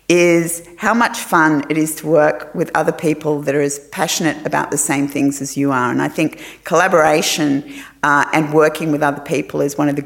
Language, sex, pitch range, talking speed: English, female, 145-170 Hz, 215 wpm